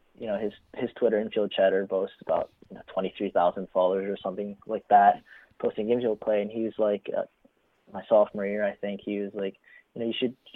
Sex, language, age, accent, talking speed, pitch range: male, English, 20-39, American, 215 wpm, 95-115 Hz